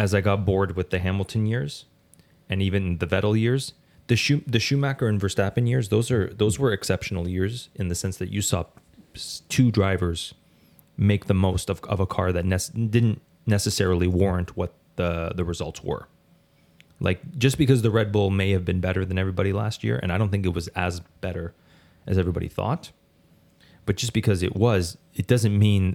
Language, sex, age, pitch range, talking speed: English, male, 30-49, 90-110 Hz, 195 wpm